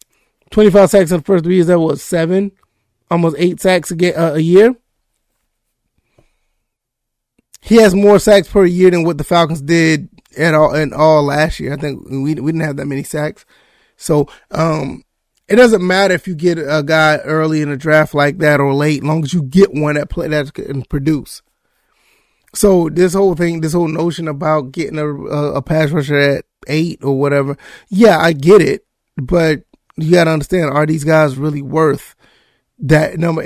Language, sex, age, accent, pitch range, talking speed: English, male, 20-39, American, 150-175 Hz, 180 wpm